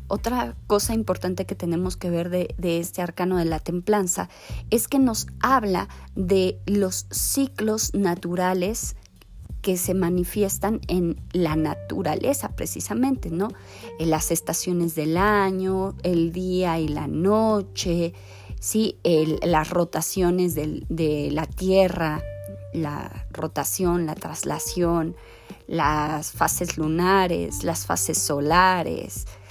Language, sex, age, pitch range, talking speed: Spanish, female, 30-49, 155-205 Hz, 120 wpm